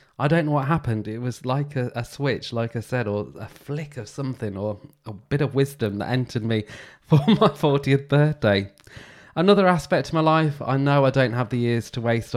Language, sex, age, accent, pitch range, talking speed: English, male, 20-39, British, 105-140 Hz, 220 wpm